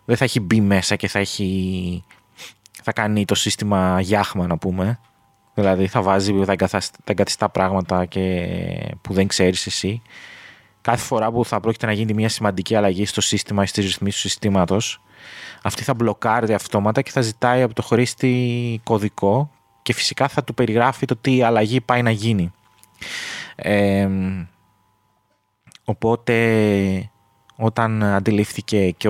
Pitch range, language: 100-115 Hz, Greek